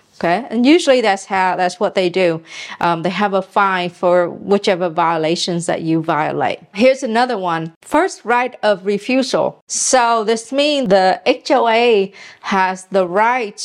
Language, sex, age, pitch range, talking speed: English, female, 40-59, 185-240 Hz, 155 wpm